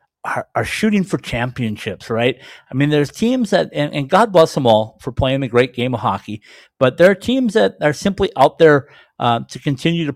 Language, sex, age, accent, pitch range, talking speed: English, male, 50-69, American, 120-145 Hz, 215 wpm